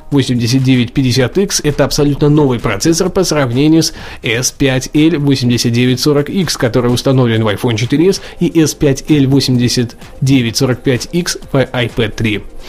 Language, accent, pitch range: Russian, native, 125-155 Hz